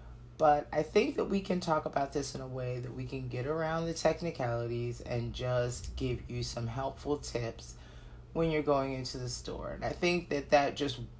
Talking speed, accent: 205 wpm, American